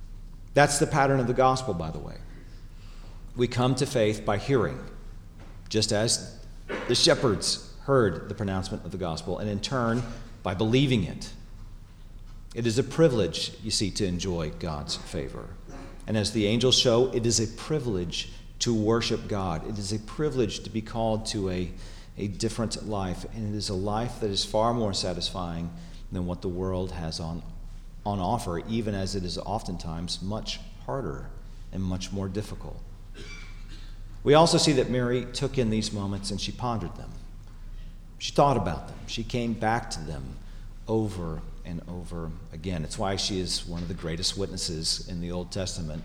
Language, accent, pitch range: English, American, 90-110 Hz